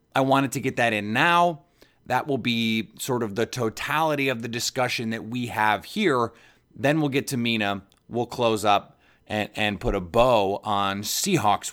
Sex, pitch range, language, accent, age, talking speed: male, 110-140 Hz, English, American, 30-49, 185 wpm